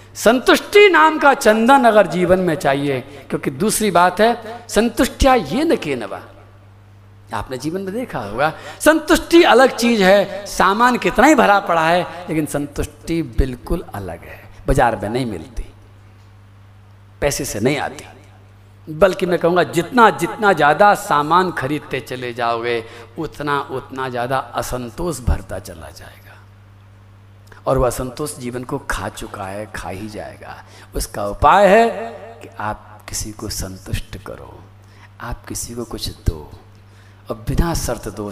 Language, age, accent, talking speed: Hindi, 50-69, native, 140 wpm